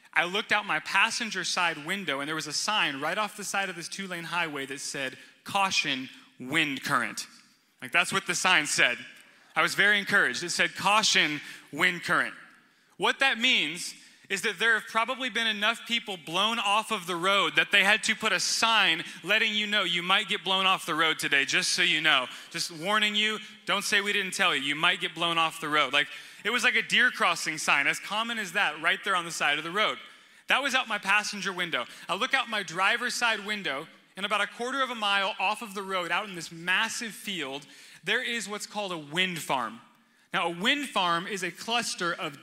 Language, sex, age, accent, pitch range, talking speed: English, male, 20-39, American, 170-215 Hz, 225 wpm